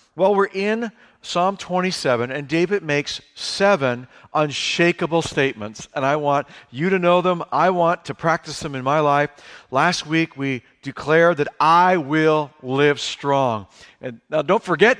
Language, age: English, 50-69